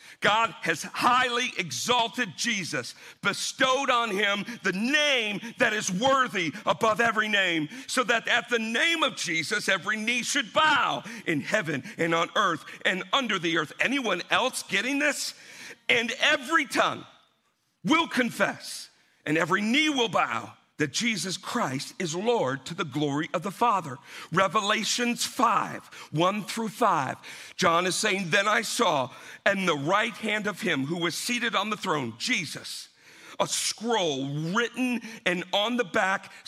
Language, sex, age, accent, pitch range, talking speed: English, male, 50-69, American, 175-240 Hz, 150 wpm